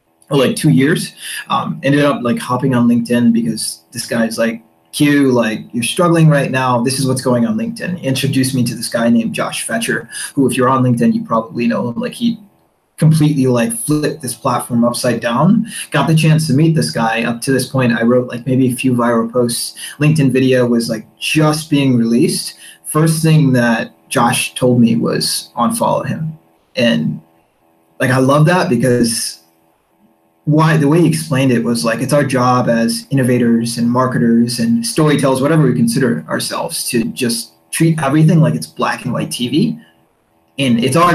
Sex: male